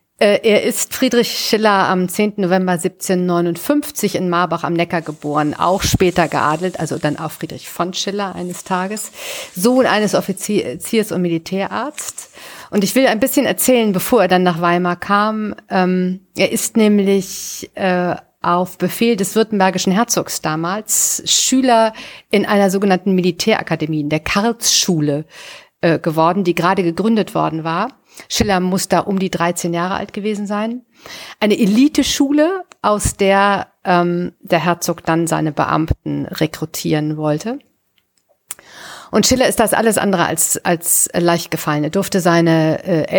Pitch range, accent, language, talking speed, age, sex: 170-210 Hz, German, German, 140 wpm, 50-69, female